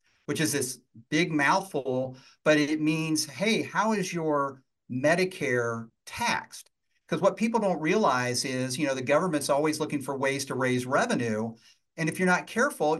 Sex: male